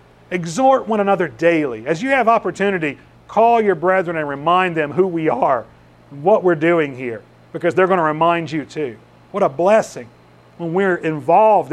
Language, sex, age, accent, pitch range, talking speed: English, male, 40-59, American, 145-185 Hz, 175 wpm